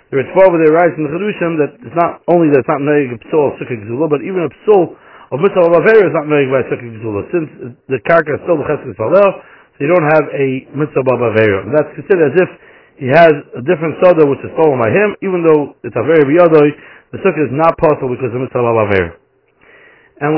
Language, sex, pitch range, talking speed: English, male, 140-170 Hz, 230 wpm